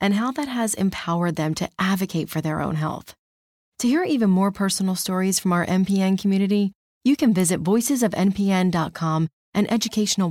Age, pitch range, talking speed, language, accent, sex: 30-49, 165-220 Hz, 165 wpm, English, American, female